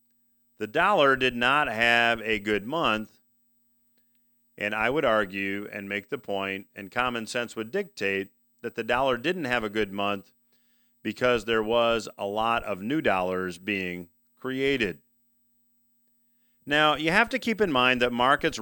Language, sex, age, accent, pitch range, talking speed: English, male, 40-59, American, 110-180 Hz, 155 wpm